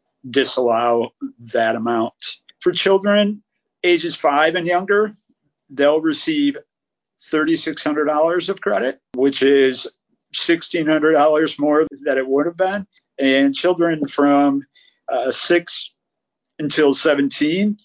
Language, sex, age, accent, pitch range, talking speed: English, male, 50-69, American, 130-190 Hz, 100 wpm